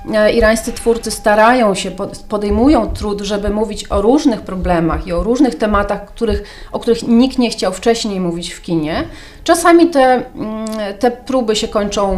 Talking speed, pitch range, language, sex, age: 150 wpm, 205-255 Hz, Polish, female, 30-49